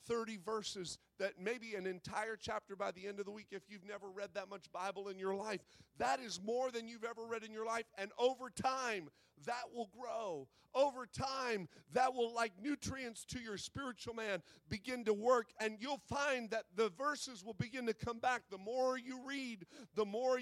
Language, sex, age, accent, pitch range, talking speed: English, male, 40-59, American, 185-240 Hz, 205 wpm